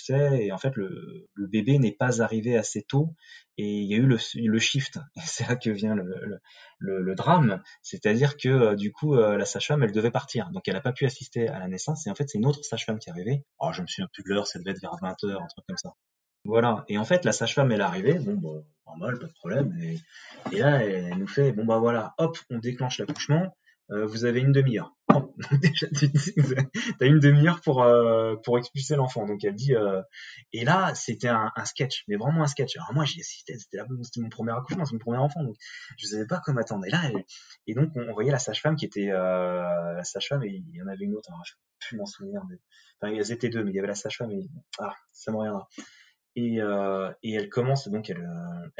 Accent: French